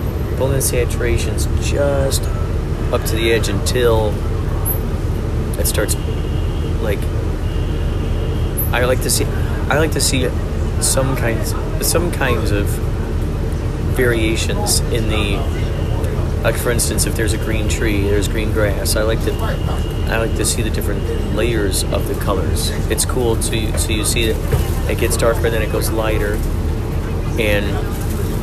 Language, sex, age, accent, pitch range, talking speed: English, male, 30-49, American, 80-105 Hz, 145 wpm